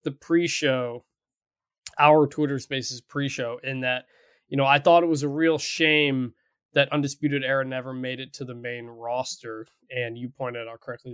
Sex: male